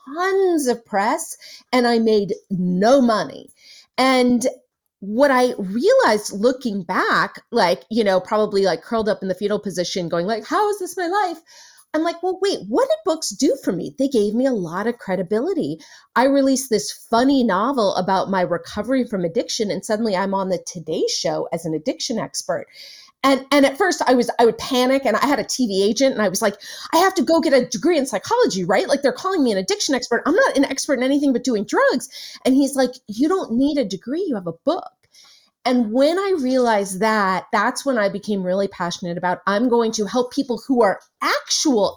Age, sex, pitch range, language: 30-49, female, 200-280 Hz, English